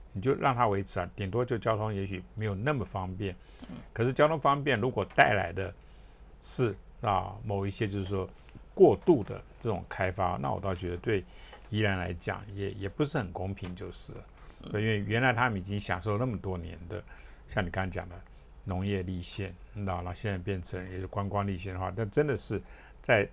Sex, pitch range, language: male, 95-110 Hz, Chinese